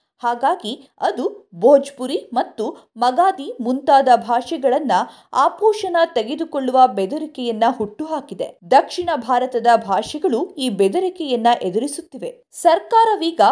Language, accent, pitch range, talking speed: Kannada, native, 250-355 Hz, 80 wpm